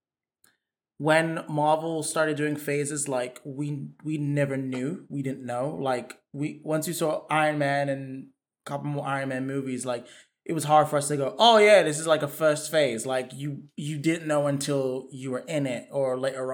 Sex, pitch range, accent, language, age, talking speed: male, 135-155 Hz, American, English, 20-39, 200 wpm